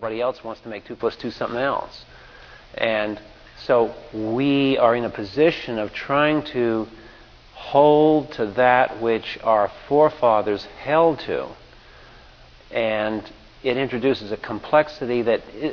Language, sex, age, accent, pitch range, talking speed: English, male, 50-69, American, 115-135 Hz, 130 wpm